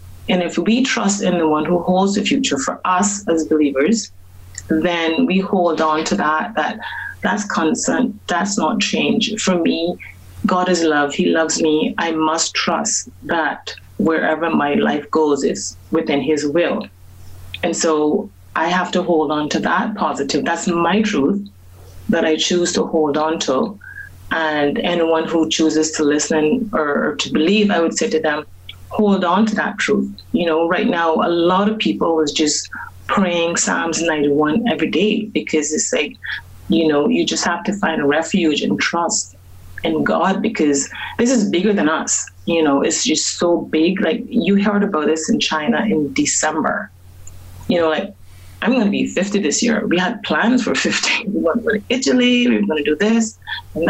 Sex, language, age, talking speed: female, English, 30-49, 185 wpm